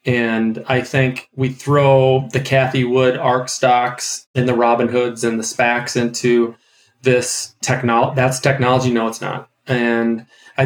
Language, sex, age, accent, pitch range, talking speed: English, male, 30-49, American, 120-140 Hz, 150 wpm